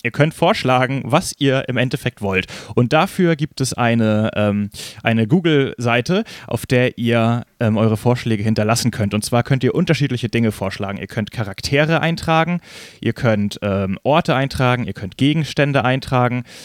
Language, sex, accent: German, male, German